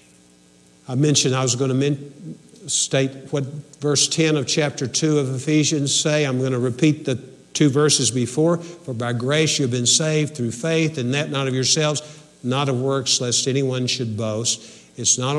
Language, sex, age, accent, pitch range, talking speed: English, male, 60-79, American, 120-155 Hz, 185 wpm